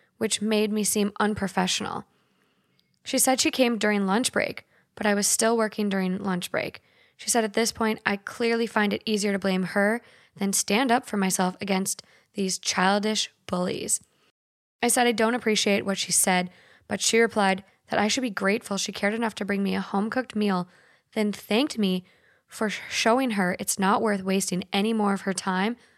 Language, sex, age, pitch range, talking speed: English, female, 10-29, 190-220 Hz, 190 wpm